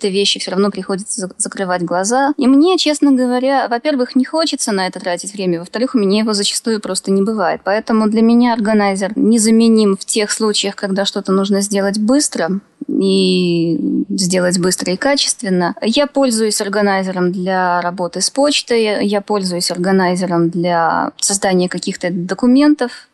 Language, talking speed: Russian, 150 wpm